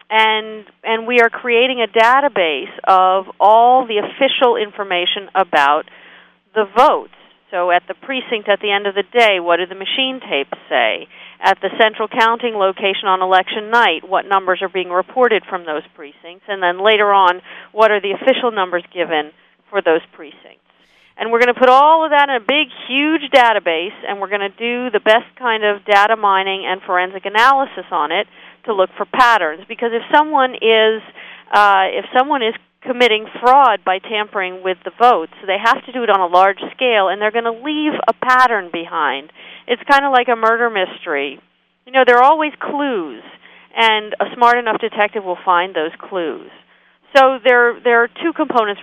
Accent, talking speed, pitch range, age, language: American, 190 wpm, 190-240 Hz, 50-69, English